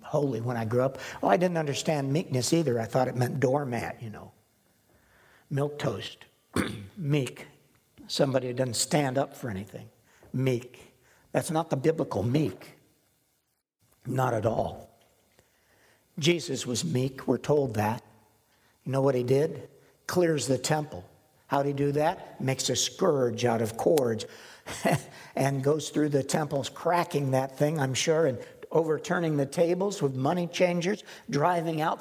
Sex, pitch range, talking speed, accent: male, 130-155 Hz, 150 wpm, American